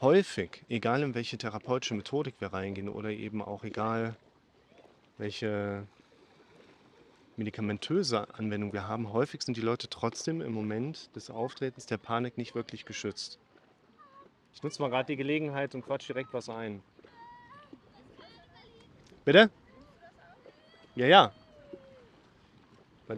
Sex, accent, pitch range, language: male, German, 110-130 Hz, German